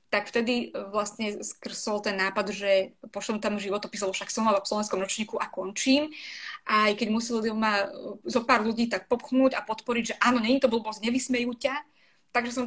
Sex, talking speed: female, 190 wpm